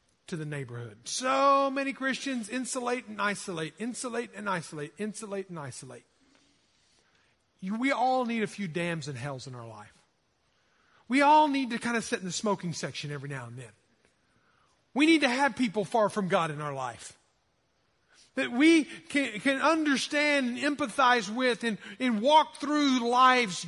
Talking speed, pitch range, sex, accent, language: 165 wpm, 210-290 Hz, male, American, English